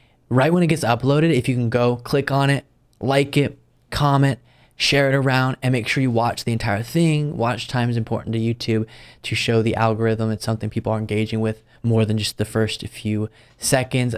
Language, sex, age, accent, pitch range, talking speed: English, male, 20-39, American, 110-130 Hz, 205 wpm